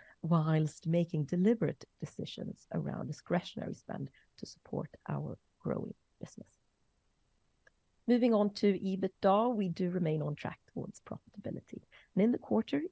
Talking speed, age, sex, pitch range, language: 125 wpm, 30-49, female, 155-210 Hz, English